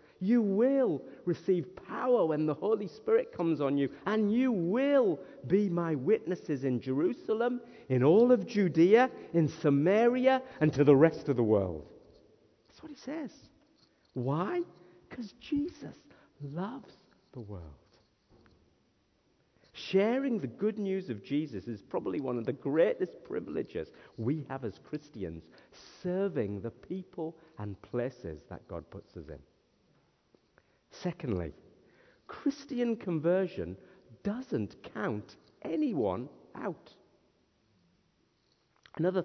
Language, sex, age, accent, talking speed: English, male, 50-69, British, 120 wpm